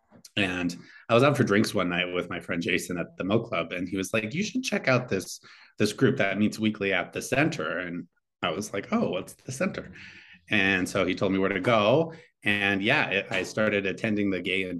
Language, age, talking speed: English, 30-49, 230 wpm